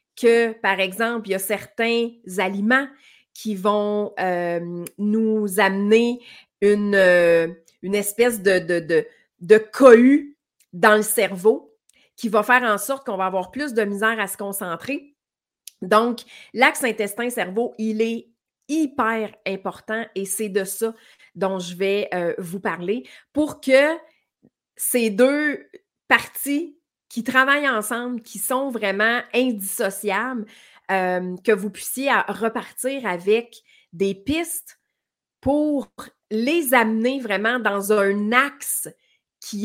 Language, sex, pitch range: French, female, 190-245 Hz